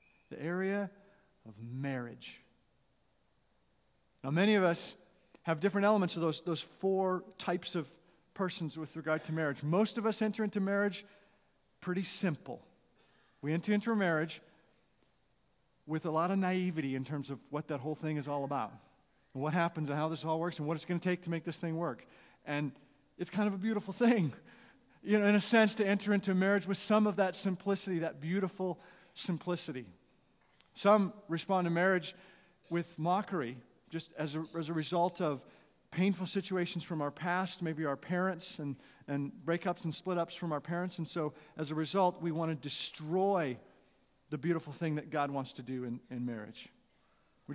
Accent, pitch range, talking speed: American, 155-190 Hz, 180 wpm